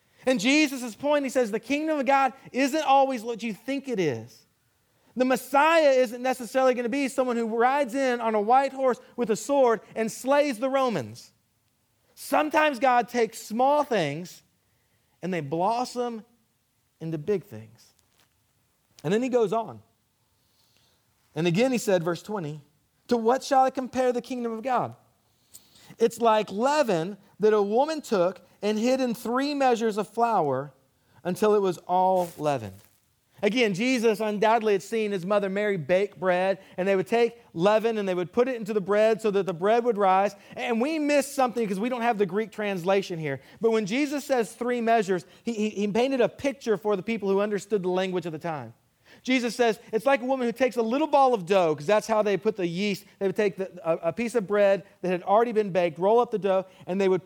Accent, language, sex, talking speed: American, English, male, 200 wpm